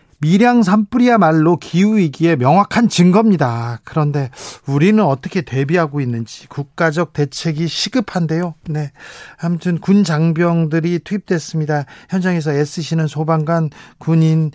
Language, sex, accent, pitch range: Korean, male, native, 150-190 Hz